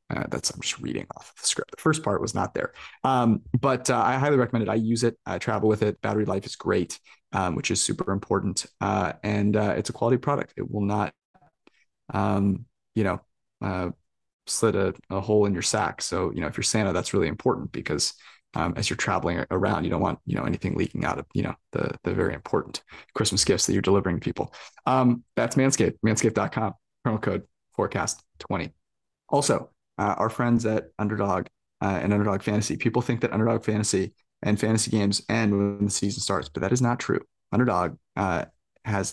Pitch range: 100-120 Hz